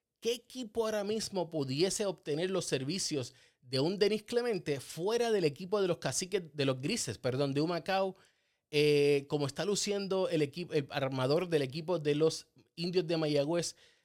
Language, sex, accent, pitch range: Spanish, male, Venezuelan, 145-190 Hz